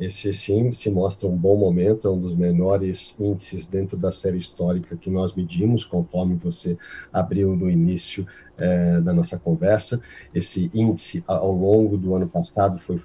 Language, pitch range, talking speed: Portuguese, 90-105 Hz, 165 wpm